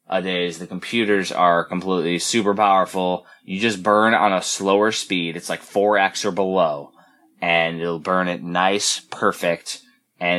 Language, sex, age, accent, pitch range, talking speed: English, male, 20-39, American, 85-105 Hz, 155 wpm